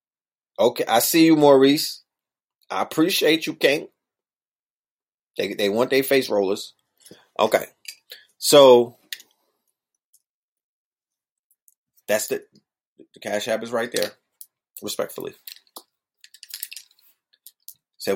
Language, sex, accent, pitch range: English, male, American, 115-150 Hz